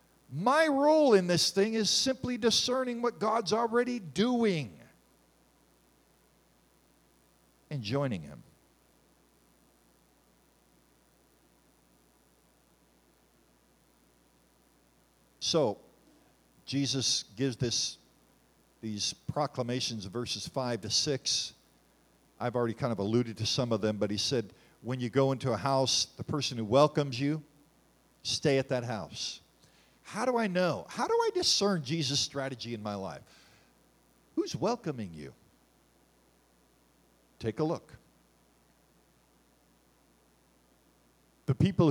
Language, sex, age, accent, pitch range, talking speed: English, male, 50-69, American, 110-180 Hz, 105 wpm